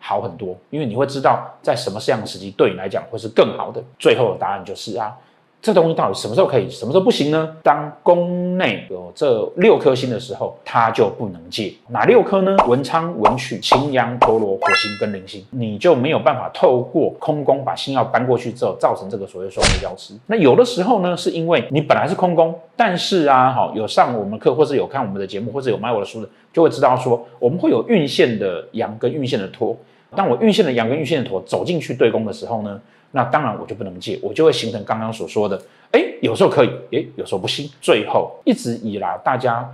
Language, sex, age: Chinese, male, 30-49